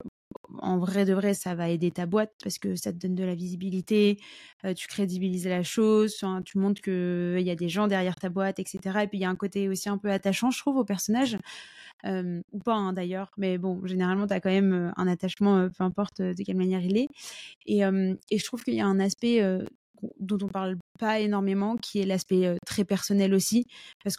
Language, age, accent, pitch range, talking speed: French, 20-39, French, 185-210 Hz, 235 wpm